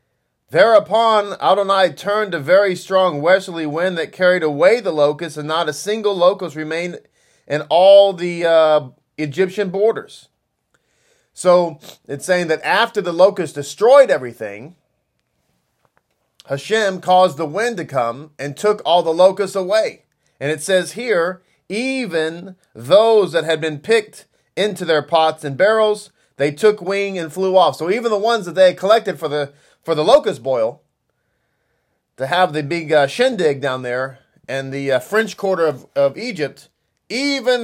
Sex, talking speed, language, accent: male, 155 wpm, English, American